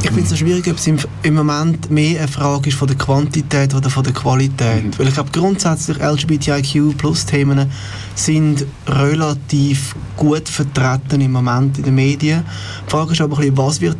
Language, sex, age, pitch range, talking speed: German, male, 20-39, 125-145 Hz, 170 wpm